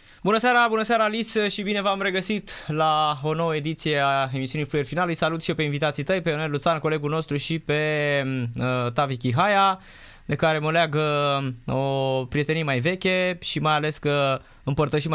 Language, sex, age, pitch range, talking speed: Romanian, male, 20-39, 130-165 Hz, 180 wpm